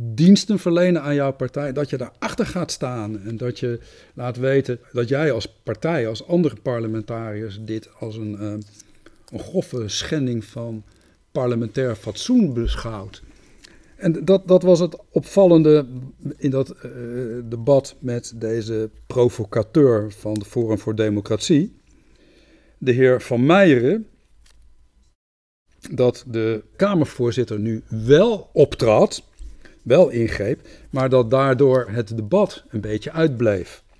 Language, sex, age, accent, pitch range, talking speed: Dutch, male, 60-79, Dutch, 110-155 Hz, 125 wpm